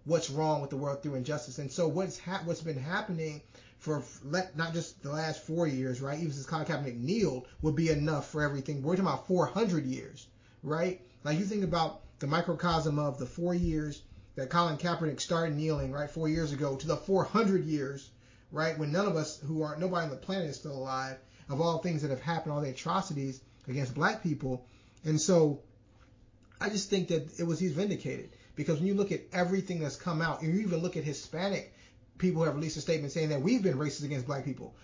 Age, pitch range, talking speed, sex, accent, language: 30-49, 140-170 Hz, 220 wpm, male, American, English